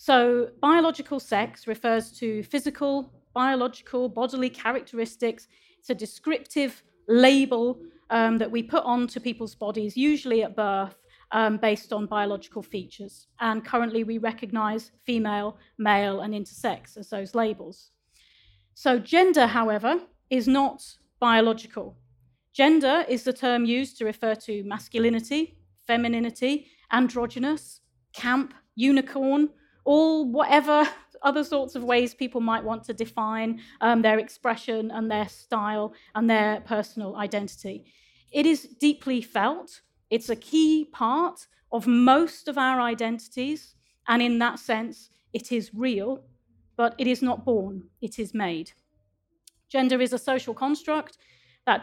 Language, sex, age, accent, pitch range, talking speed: English, female, 30-49, British, 220-265 Hz, 130 wpm